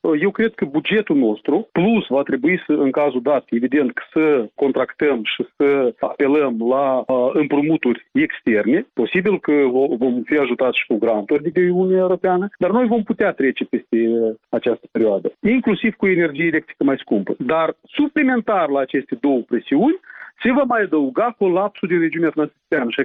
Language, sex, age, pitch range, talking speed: Romanian, male, 40-59, 145-210 Hz, 160 wpm